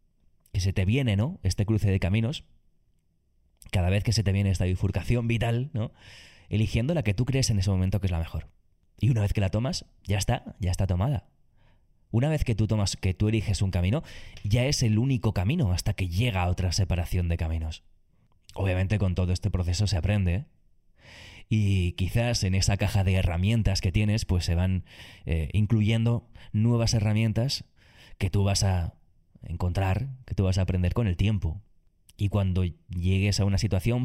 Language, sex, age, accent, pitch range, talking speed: Spanish, male, 20-39, Spanish, 90-110 Hz, 190 wpm